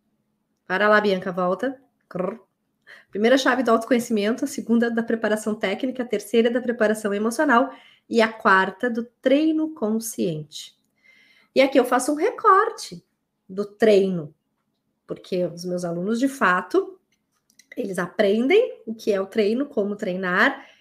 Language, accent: Portuguese, Brazilian